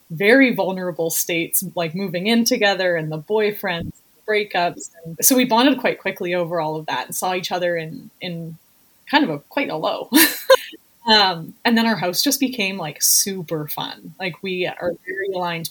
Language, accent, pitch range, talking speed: English, American, 170-220 Hz, 185 wpm